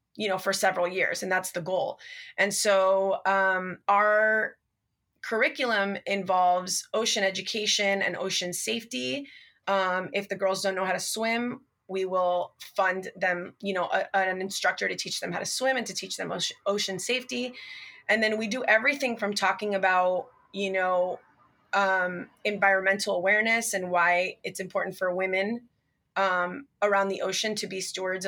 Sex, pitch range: female, 185-210 Hz